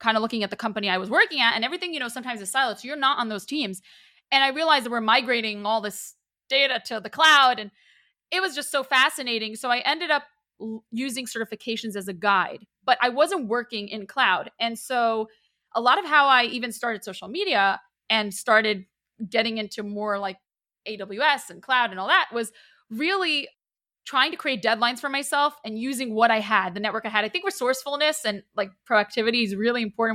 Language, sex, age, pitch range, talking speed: English, female, 20-39, 215-265 Hz, 210 wpm